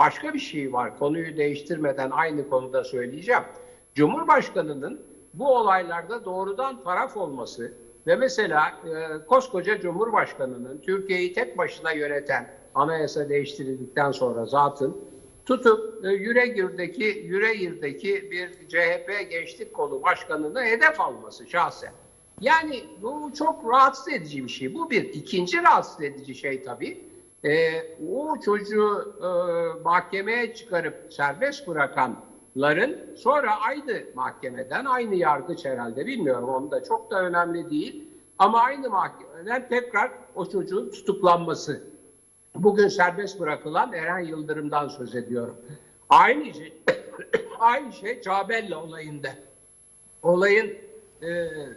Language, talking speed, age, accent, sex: Turkish, 110 wpm, 60-79, native, male